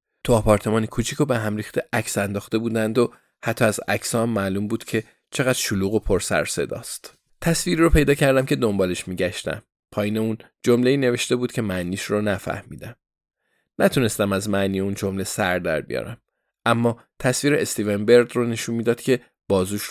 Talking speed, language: 170 wpm, Persian